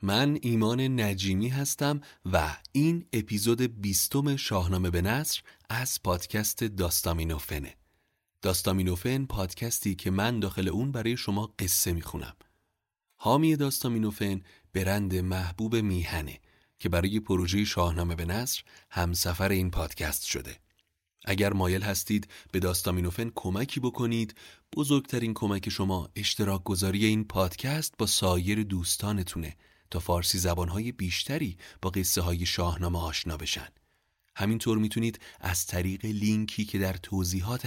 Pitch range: 90-110 Hz